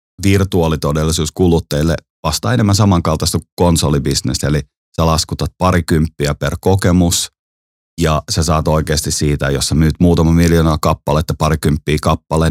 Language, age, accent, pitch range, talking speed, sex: Finnish, 30-49, native, 75-95 Hz, 125 wpm, male